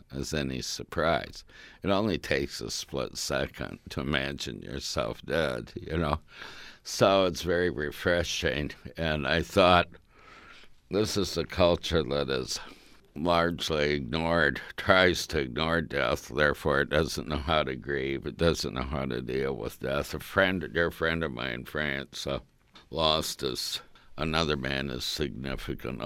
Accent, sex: American, male